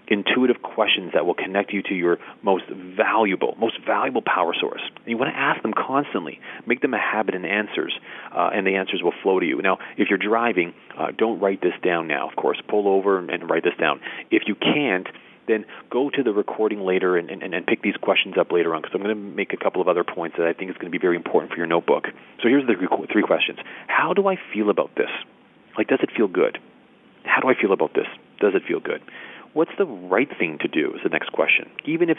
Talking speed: 240 wpm